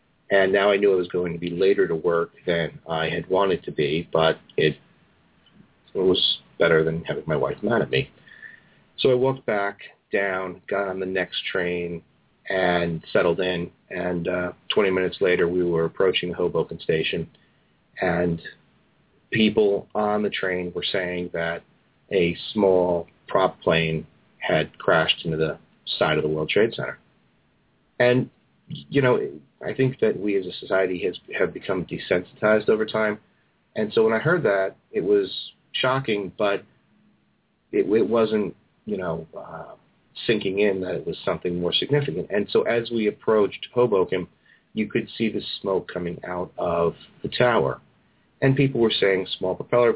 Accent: American